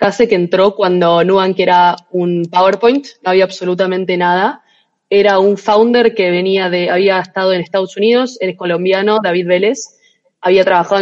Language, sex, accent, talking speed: Spanish, female, Argentinian, 165 wpm